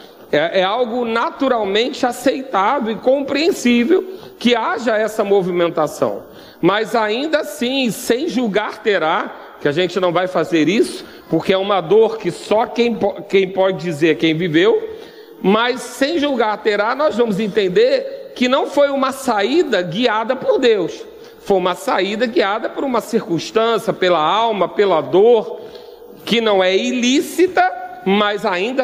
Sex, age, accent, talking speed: male, 40-59, Brazilian, 140 wpm